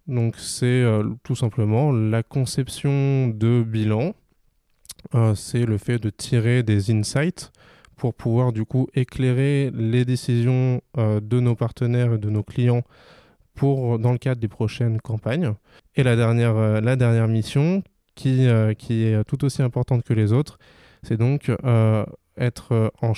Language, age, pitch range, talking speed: French, 20-39, 110-130 Hz, 145 wpm